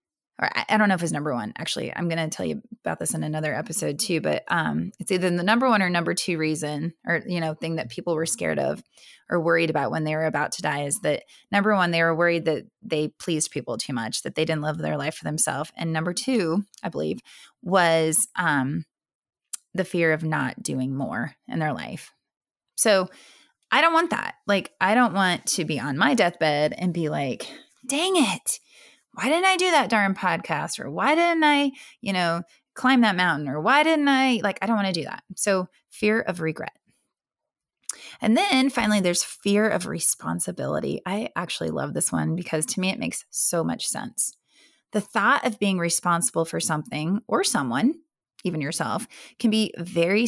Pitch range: 160-230 Hz